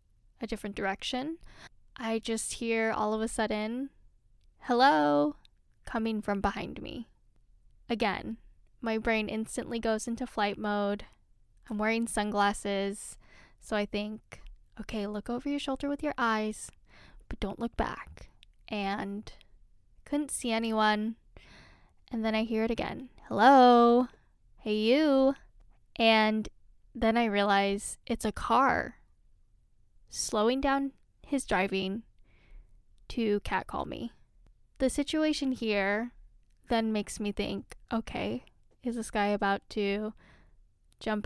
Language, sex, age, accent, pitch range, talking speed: English, female, 10-29, American, 210-245 Hz, 120 wpm